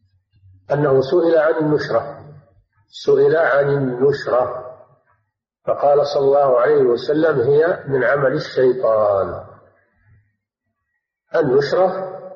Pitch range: 110-185 Hz